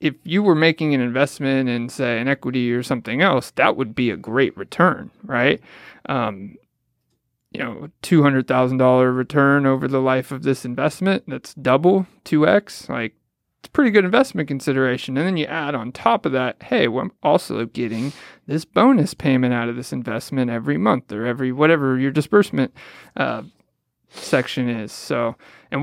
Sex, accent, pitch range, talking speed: male, American, 125-150 Hz, 170 wpm